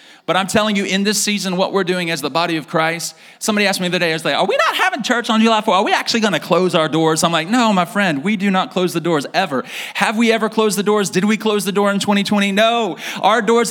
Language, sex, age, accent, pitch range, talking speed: English, male, 30-49, American, 155-210 Hz, 295 wpm